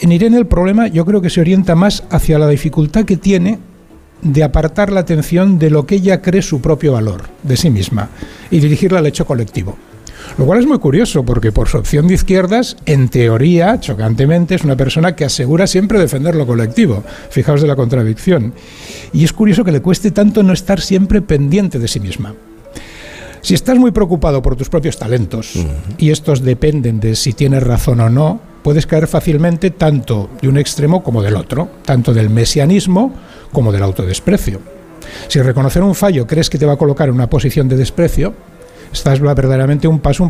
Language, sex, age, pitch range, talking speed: Spanish, male, 60-79, 130-180 Hz, 190 wpm